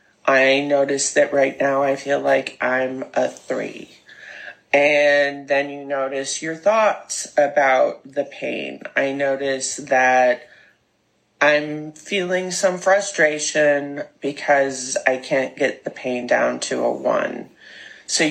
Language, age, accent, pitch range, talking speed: English, 30-49, American, 140-155 Hz, 125 wpm